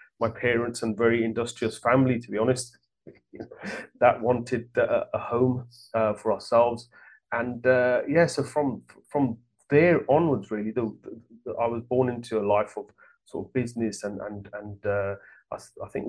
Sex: male